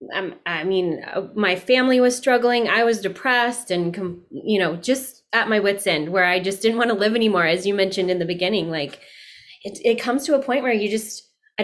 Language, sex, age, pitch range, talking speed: English, female, 20-39, 190-245 Hz, 215 wpm